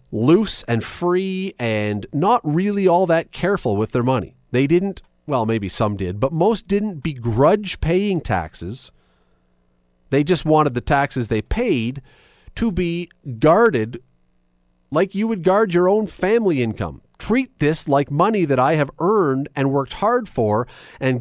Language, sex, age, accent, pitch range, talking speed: English, male, 40-59, American, 105-175 Hz, 155 wpm